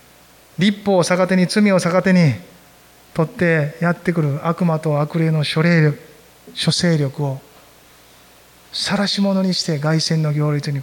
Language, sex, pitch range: Japanese, male, 135-185 Hz